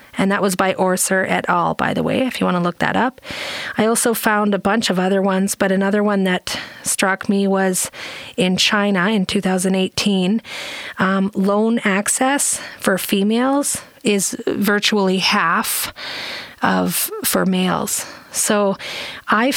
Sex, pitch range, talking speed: female, 190-230 Hz, 150 wpm